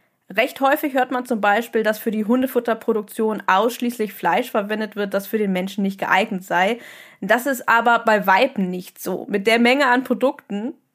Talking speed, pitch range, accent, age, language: 180 wpm, 200-245 Hz, German, 20-39, German